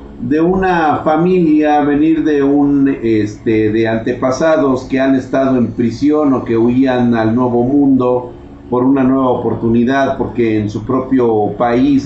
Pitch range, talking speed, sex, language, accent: 105-140 Hz, 145 wpm, male, Spanish, Mexican